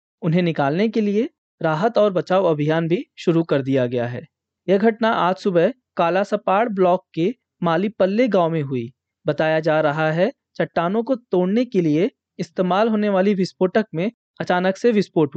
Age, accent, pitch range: 20-39, native, 160-210 Hz